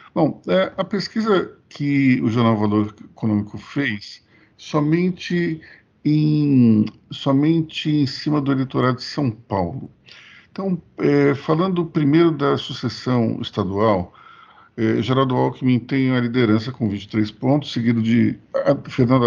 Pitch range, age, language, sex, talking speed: 110-150 Hz, 50-69, Portuguese, male, 110 wpm